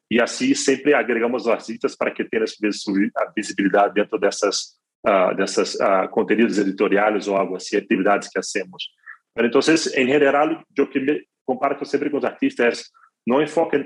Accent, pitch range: Brazilian, 105-130 Hz